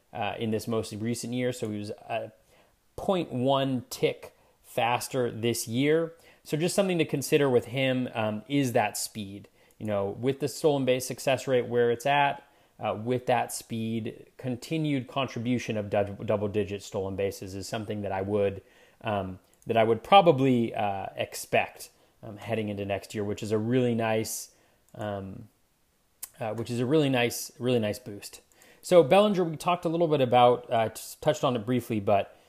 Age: 30-49